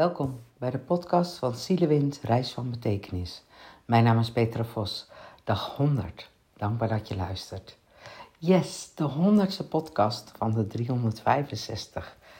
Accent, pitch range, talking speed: Dutch, 105-155 Hz, 130 wpm